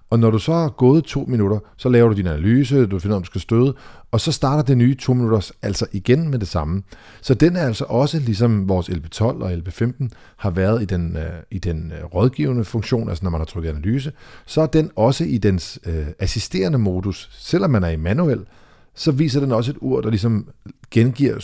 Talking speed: 220 wpm